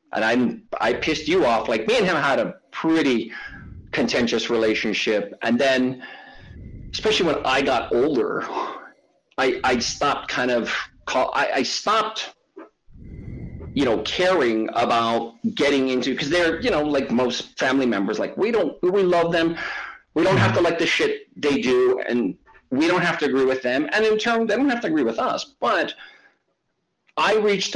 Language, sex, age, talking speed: English, male, 40-59, 175 wpm